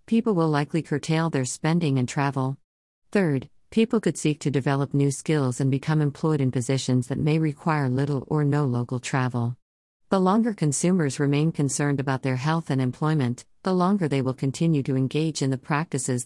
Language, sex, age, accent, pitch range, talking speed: English, female, 50-69, American, 130-155 Hz, 180 wpm